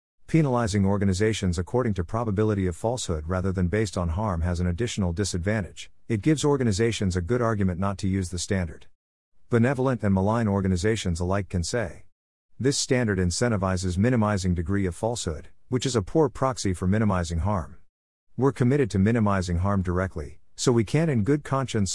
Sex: male